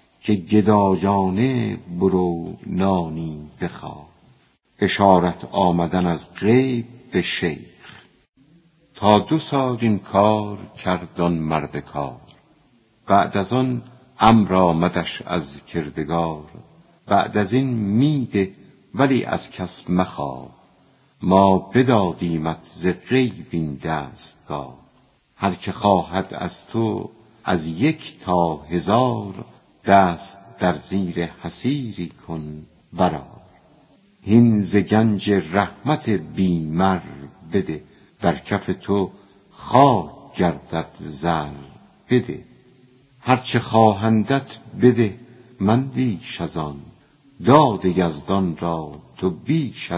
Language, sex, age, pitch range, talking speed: Persian, female, 50-69, 85-120 Hz, 90 wpm